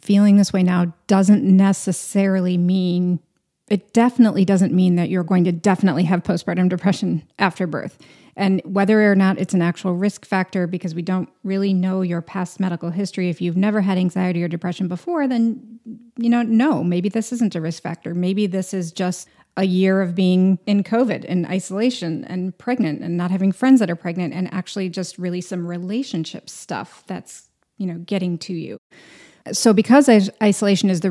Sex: female